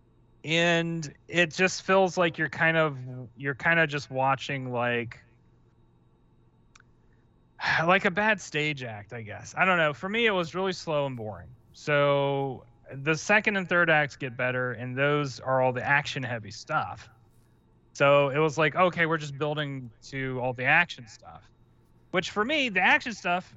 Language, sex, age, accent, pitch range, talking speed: English, male, 30-49, American, 125-160 Hz, 170 wpm